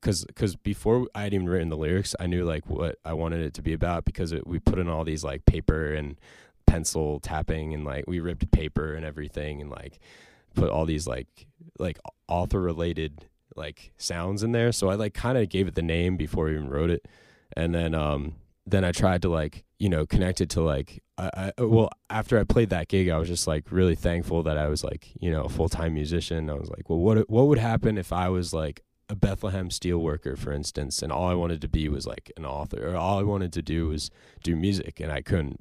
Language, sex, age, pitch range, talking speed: English, male, 20-39, 75-95 Hz, 240 wpm